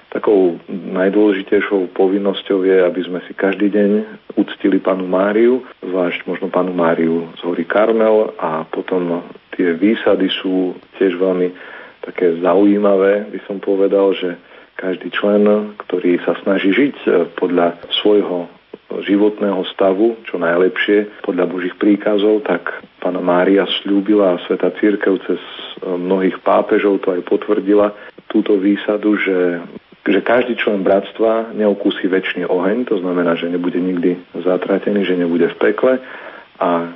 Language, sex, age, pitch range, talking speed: Slovak, male, 40-59, 90-105 Hz, 130 wpm